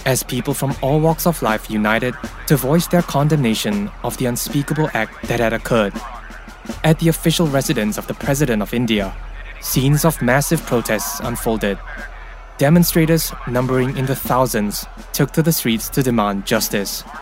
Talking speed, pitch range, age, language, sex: 155 wpm, 105-145 Hz, 20-39, English, male